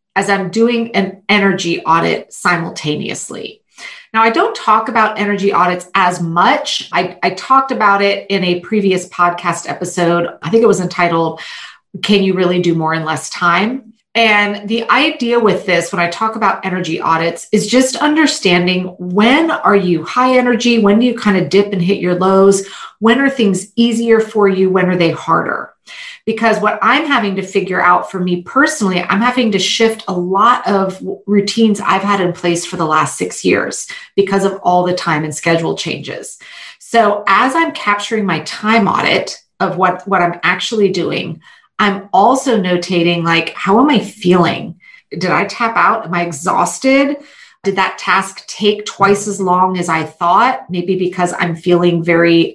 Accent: American